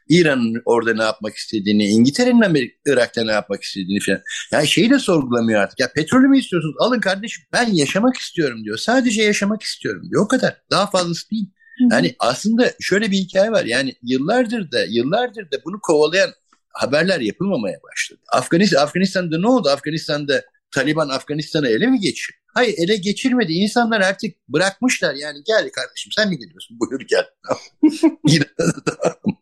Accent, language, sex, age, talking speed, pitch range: native, Turkish, male, 60-79, 155 wpm, 140-230 Hz